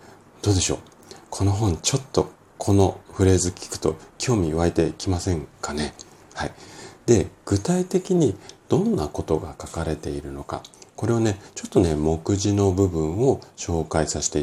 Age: 40-59